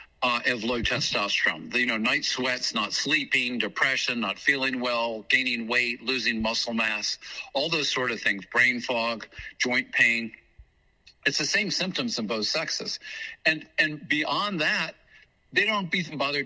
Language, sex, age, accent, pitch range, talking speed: English, male, 50-69, American, 115-140 Hz, 155 wpm